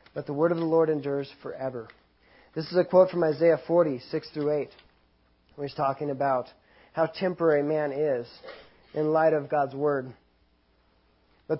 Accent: American